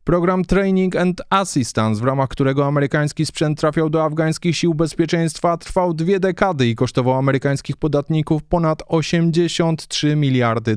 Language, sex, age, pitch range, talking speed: Polish, male, 20-39, 135-175 Hz, 135 wpm